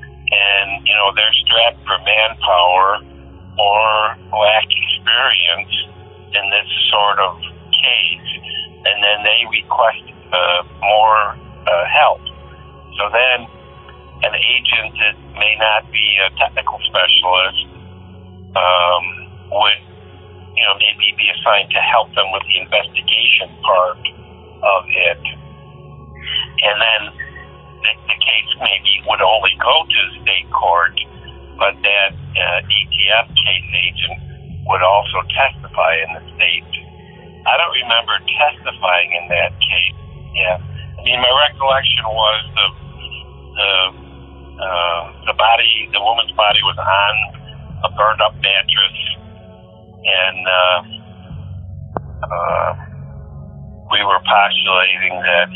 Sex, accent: male, American